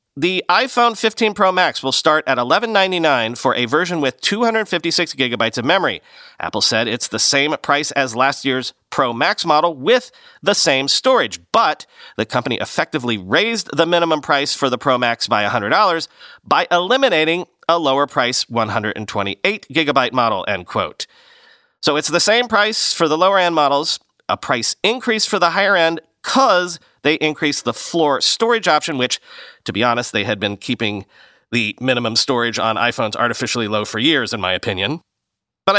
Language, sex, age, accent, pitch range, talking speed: English, male, 40-59, American, 125-180 Hz, 165 wpm